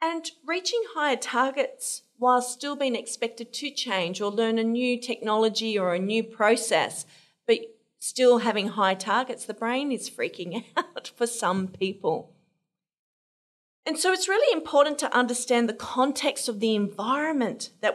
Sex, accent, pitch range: female, Australian, 195-255 Hz